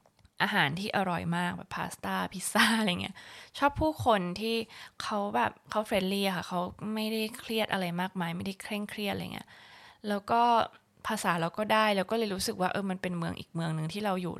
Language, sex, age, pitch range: Thai, female, 20-39, 170-215 Hz